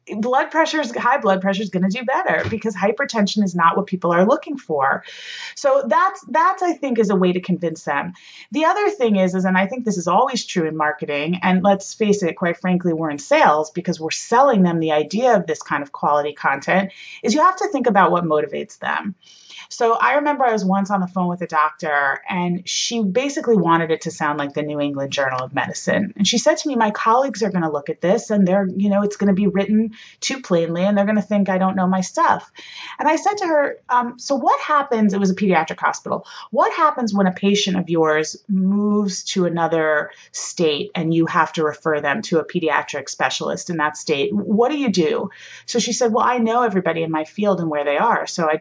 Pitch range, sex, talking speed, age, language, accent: 175-245 Hz, female, 240 wpm, 30-49, English, American